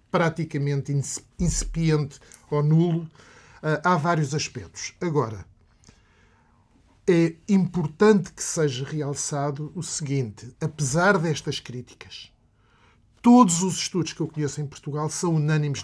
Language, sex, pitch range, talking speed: Portuguese, male, 125-175 Hz, 105 wpm